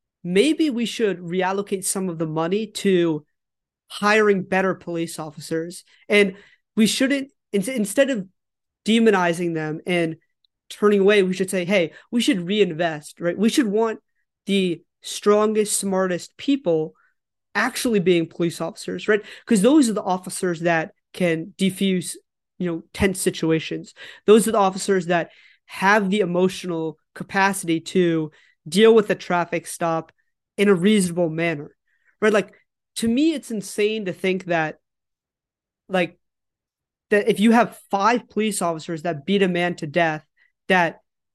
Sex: male